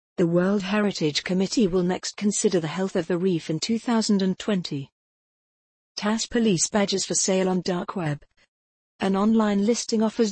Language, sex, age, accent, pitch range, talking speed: English, female, 50-69, British, 165-200 Hz, 150 wpm